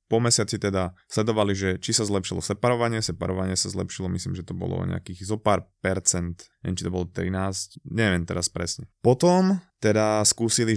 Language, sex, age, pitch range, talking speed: Slovak, male, 20-39, 95-115 Hz, 175 wpm